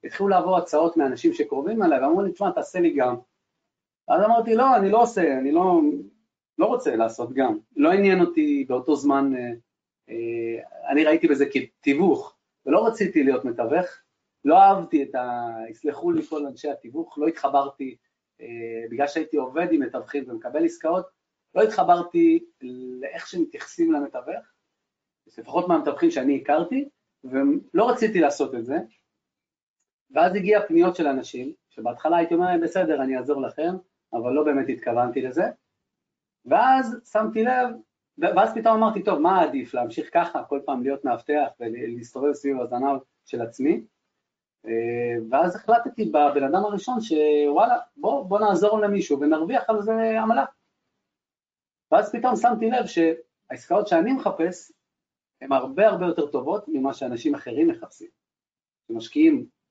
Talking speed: 140 wpm